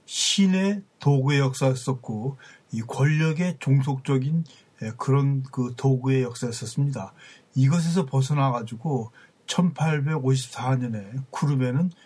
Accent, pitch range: native, 130-165 Hz